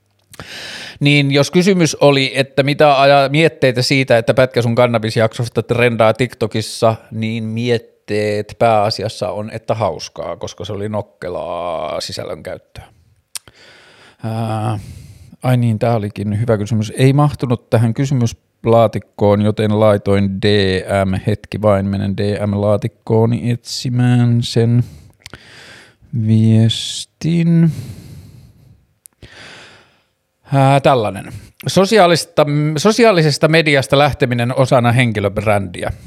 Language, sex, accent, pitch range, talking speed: Finnish, male, native, 110-140 Hz, 90 wpm